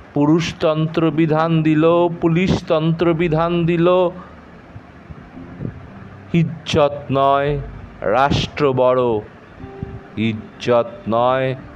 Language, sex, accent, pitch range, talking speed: Bengali, male, native, 120-150 Hz, 60 wpm